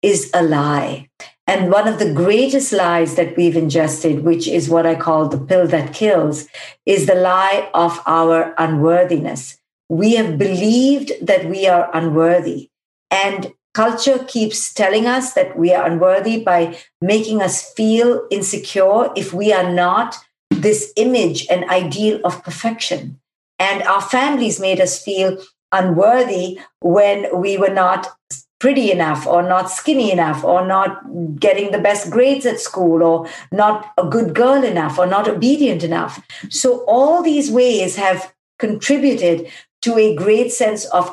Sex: female